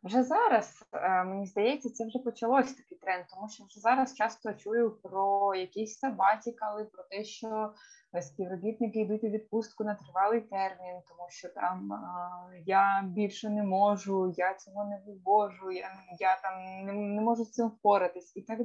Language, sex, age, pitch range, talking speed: Ukrainian, female, 20-39, 195-240 Hz, 165 wpm